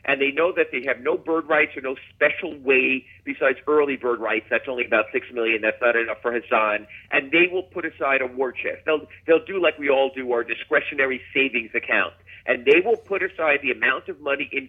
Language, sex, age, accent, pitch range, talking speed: English, male, 50-69, American, 120-165 Hz, 230 wpm